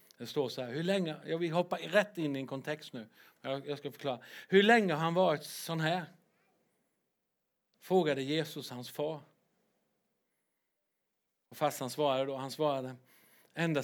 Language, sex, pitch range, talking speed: English, male, 140-170 Hz, 145 wpm